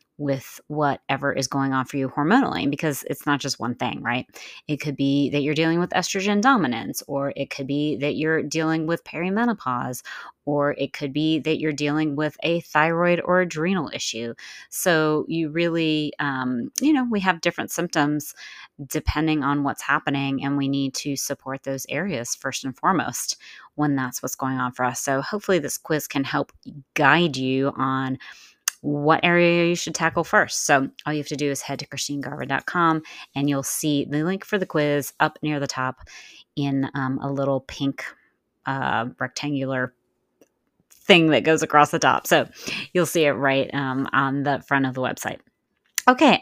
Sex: female